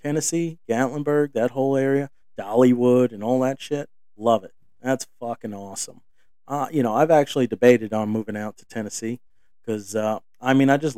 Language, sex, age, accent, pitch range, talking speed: English, male, 40-59, American, 110-135 Hz, 170 wpm